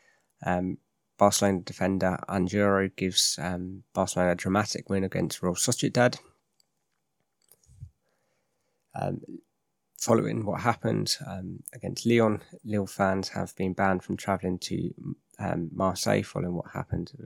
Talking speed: 115 wpm